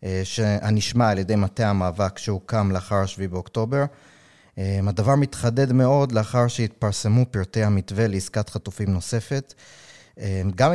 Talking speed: 110 wpm